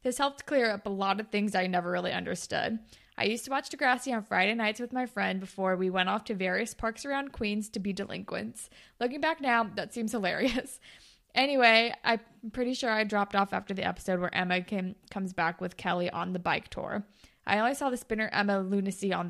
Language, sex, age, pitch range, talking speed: English, female, 20-39, 195-245 Hz, 220 wpm